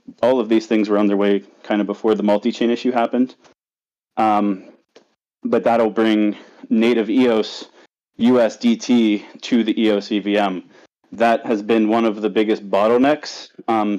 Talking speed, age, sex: 140 wpm, 30-49, male